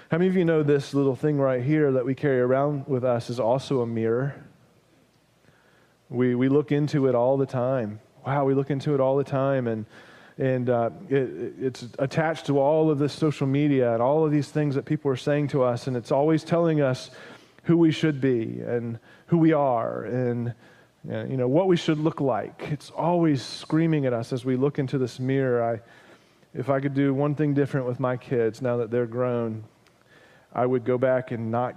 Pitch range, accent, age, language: 125-145 Hz, American, 30-49, English